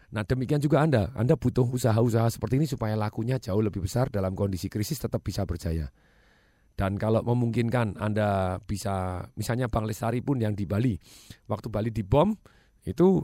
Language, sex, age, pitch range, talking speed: Indonesian, male, 40-59, 105-130 Hz, 165 wpm